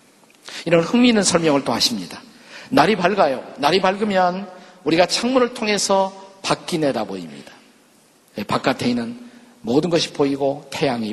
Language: Korean